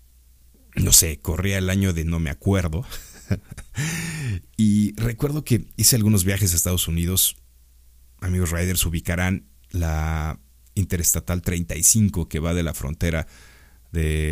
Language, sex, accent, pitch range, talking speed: Spanish, male, Mexican, 75-95 Hz, 125 wpm